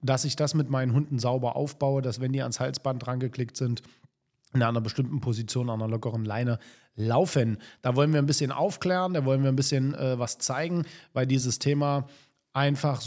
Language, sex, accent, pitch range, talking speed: German, male, German, 125-160 Hz, 200 wpm